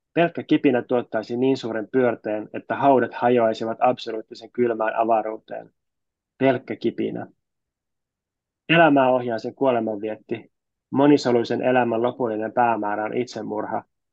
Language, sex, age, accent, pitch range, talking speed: Finnish, male, 20-39, native, 110-125 Hz, 105 wpm